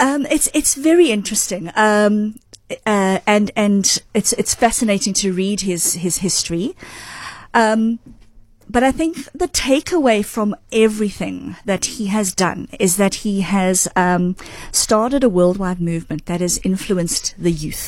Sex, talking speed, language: female, 145 wpm, English